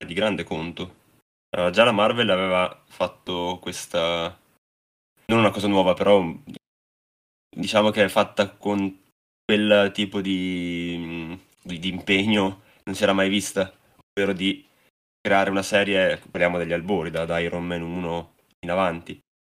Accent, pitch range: native, 90-100 Hz